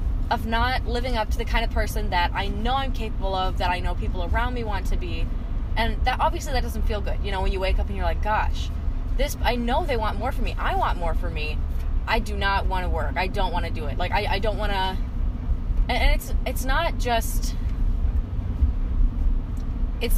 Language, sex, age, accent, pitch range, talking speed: English, female, 20-39, American, 70-90 Hz, 230 wpm